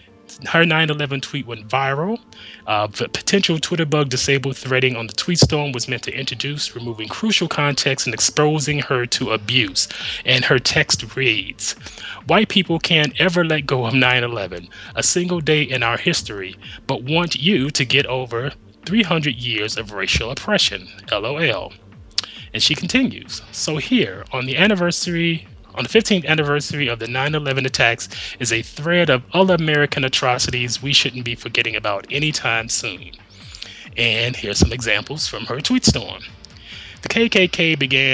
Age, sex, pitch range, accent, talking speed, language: 30-49, male, 115-165 Hz, American, 160 wpm, English